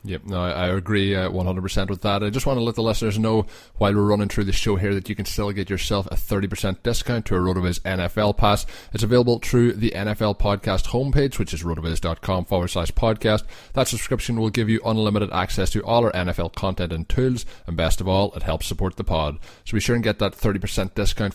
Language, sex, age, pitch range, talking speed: English, male, 20-39, 90-110 Hz, 230 wpm